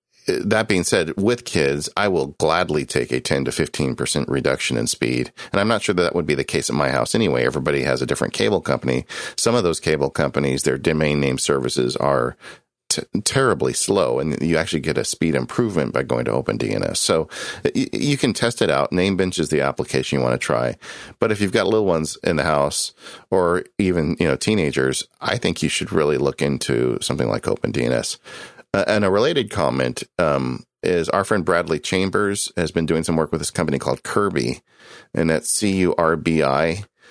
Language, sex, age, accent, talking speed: English, male, 40-59, American, 205 wpm